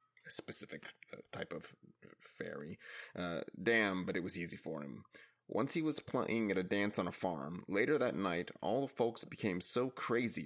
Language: English